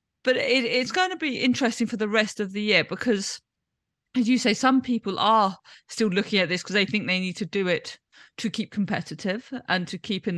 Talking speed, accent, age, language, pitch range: 225 wpm, British, 40-59, English, 170-230 Hz